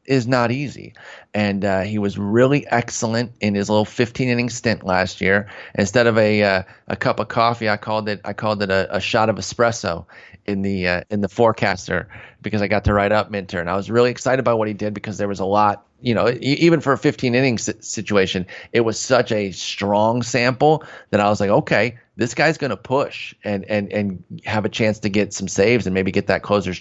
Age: 30-49